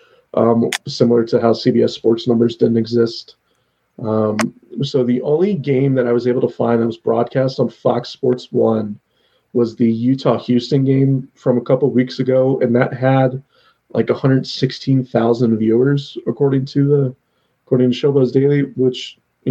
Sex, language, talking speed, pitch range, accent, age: male, English, 155 wpm, 120-135 Hz, American, 30-49